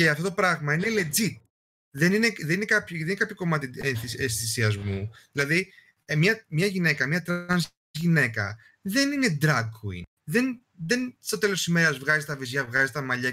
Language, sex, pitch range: Greek, male, 115-180 Hz